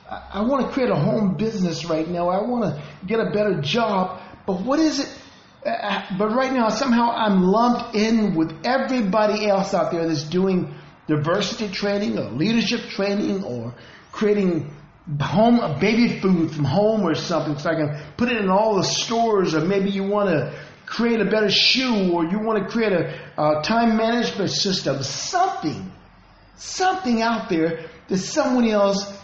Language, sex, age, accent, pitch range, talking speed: English, male, 50-69, American, 180-245 Hz, 170 wpm